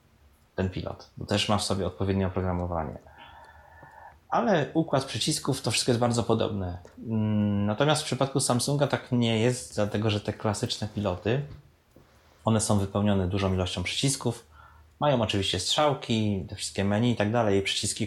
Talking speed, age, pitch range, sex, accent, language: 155 wpm, 20-39, 100-125 Hz, male, native, Polish